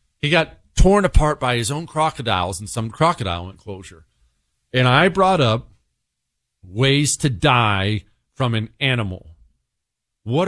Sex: male